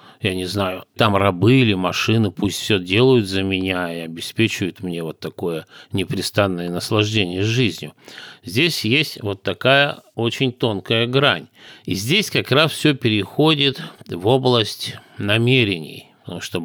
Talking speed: 135 wpm